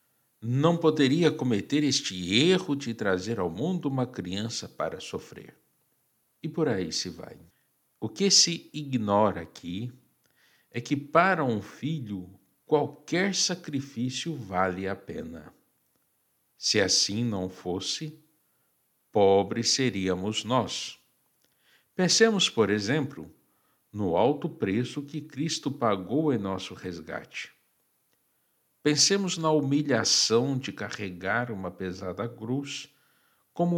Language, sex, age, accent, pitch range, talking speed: Portuguese, male, 60-79, Brazilian, 95-150 Hz, 110 wpm